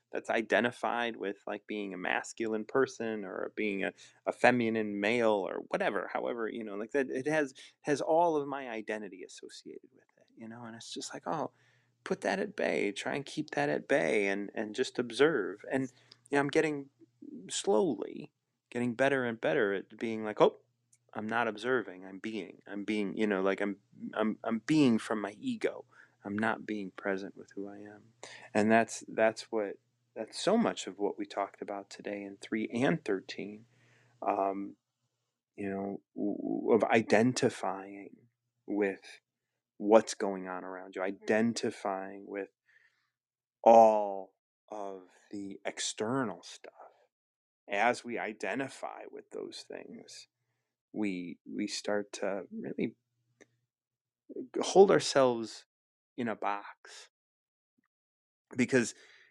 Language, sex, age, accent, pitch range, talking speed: English, male, 30-49, American, 100-125 Hz, 145 wpm